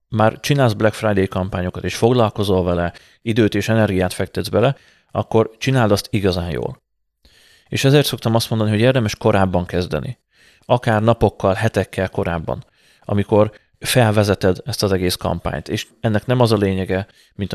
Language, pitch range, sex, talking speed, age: Hungarian, 90-110 Hz, male, 150 wpm, 30-49